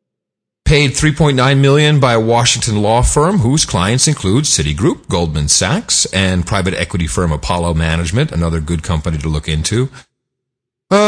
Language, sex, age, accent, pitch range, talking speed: English, male, 40-59, American, 85-135 Hz, 145 wpm